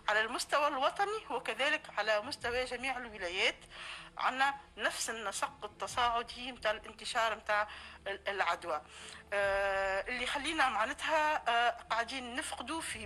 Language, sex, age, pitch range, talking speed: Arabic, female, 50-69, 230-310 Hz, 100 wpm